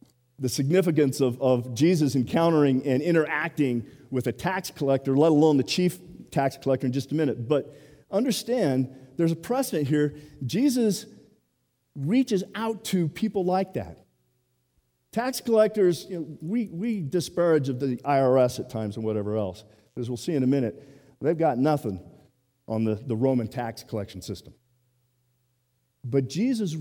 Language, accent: English, American